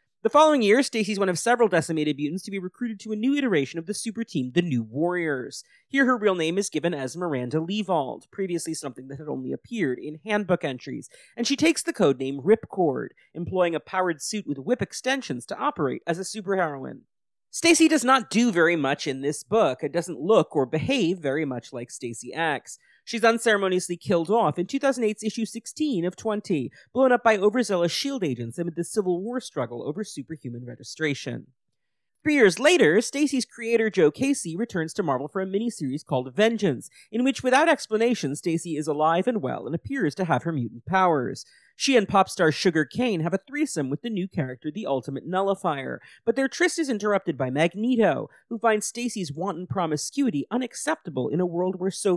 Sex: male